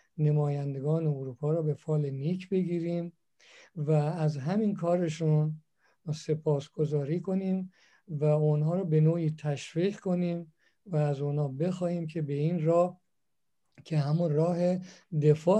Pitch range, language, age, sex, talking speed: 150-175 Hz, Persian, 50-69, male, 125 wpm